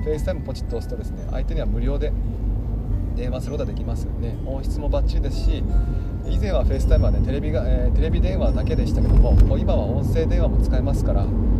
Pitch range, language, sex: 80-105 Hz, Japanese, male